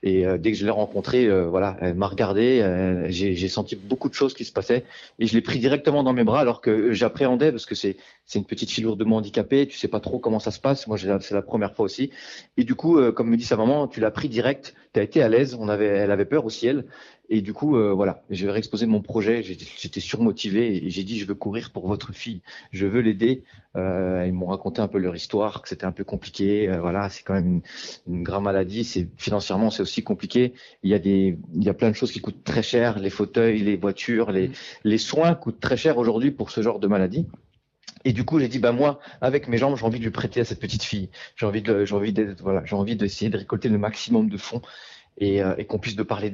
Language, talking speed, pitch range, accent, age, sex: French, 265 wpm, 100-120 Hz, French, 30-49, male